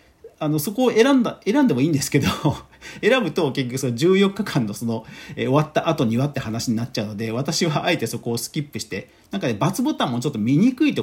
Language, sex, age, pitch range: Japanese, male, 40-59, 120-185 Hz